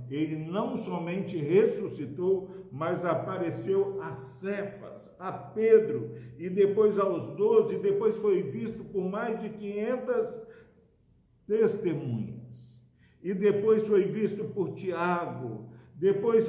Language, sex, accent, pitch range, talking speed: Portuguese, male, Brazilian, 125-195 Hz, 105 wpm